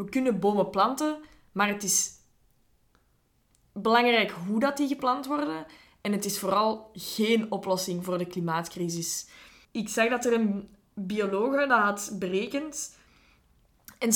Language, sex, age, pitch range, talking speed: Dutch, female, 20-39, 185-240 Hz, 130 wpm